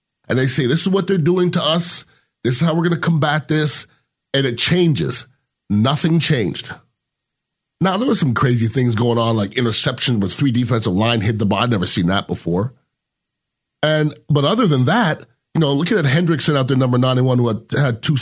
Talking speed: 210 wpm